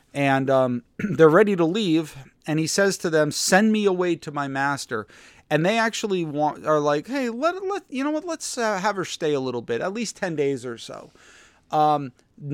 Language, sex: English, male